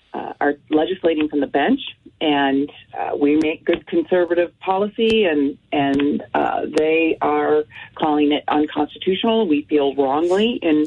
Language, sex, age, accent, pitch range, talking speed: English, female, 40-59, American, 150-215 Hz, 140 wpm